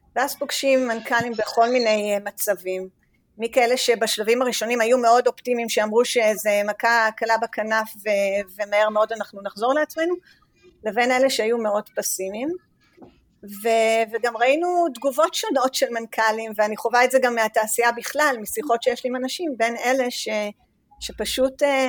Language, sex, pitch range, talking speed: Hebrew, female, 215-255 Hz, 140 wpm